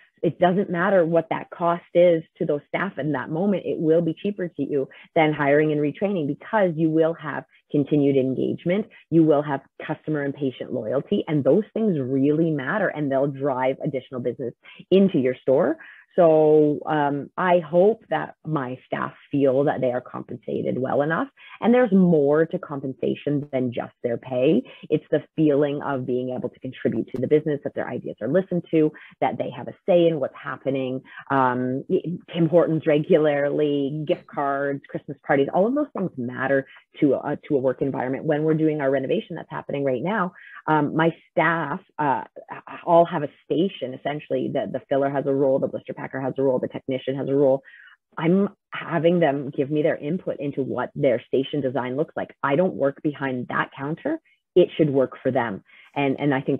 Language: English